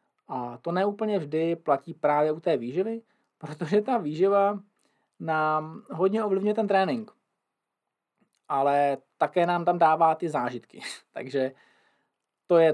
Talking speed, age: 130 wpm, 20-39